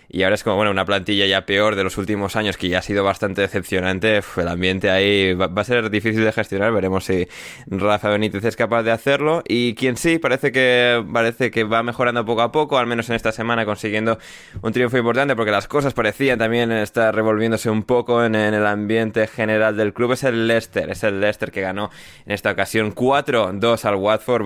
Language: Spanish